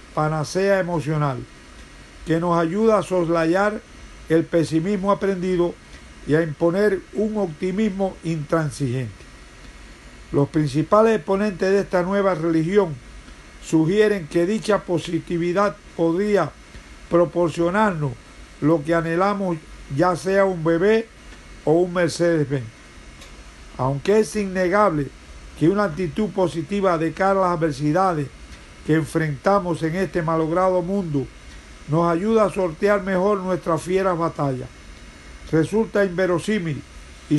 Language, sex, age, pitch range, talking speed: Spanish, male, 50-69, 155-195 Hz, 110 wpm